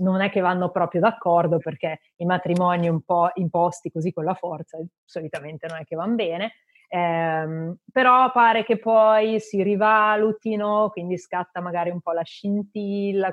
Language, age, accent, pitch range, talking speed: Italian, 30-49, native, 165-195 Hz, 160 wpm